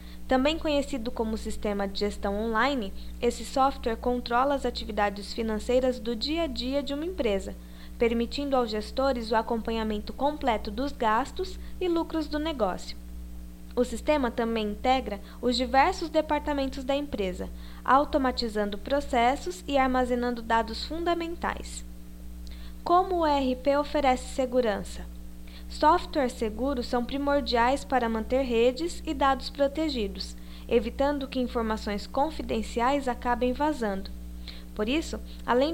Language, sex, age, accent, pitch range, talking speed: Portuguese, female, 10-29, Brazilian, 210-280 Hz, 120 wpm